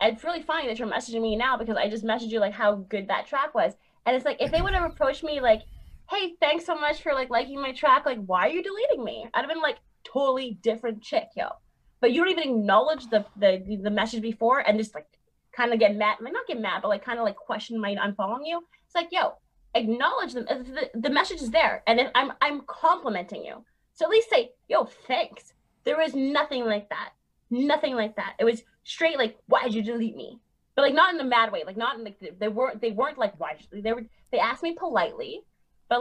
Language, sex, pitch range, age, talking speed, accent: English, female, 220-315 Hz, 20-39, 245 wpm, American